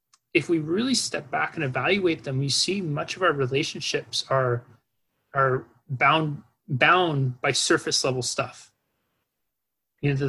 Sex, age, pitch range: male, 30-49, 125-155 Hz